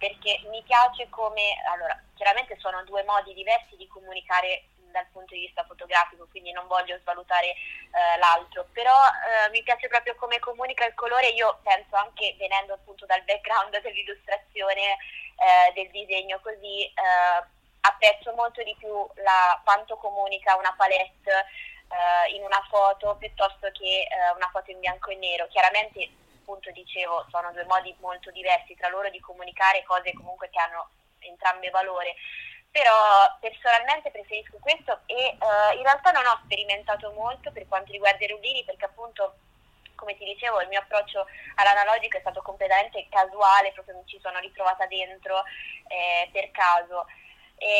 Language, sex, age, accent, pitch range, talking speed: Italian, female, 20-39, native, 185-220 Hz, 155 wpm